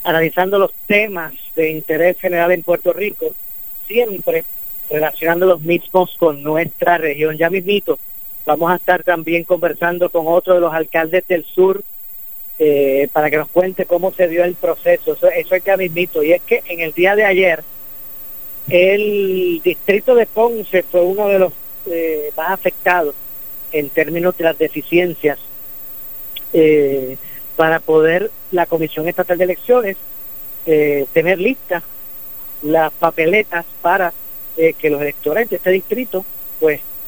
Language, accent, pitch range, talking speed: Spanish, American, 155-200 Hz, 145 wpm